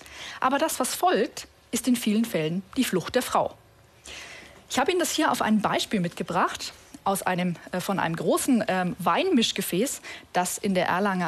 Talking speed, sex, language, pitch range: 175 wpm, female, German, 190-270 Hz